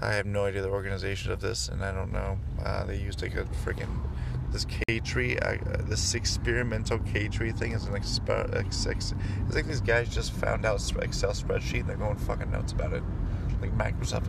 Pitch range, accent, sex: 90-110 Hz, American, male